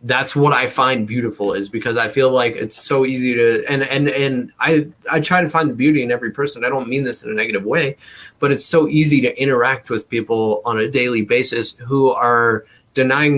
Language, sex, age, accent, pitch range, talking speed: English, male, 20-39, American, 120-150 Hz, 225 wpm